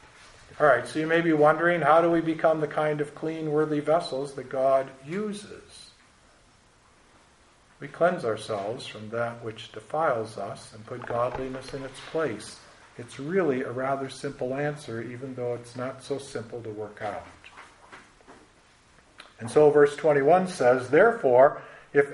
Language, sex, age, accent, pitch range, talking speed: English, male, 50-69, American, 115-155 Hz, 150 wpm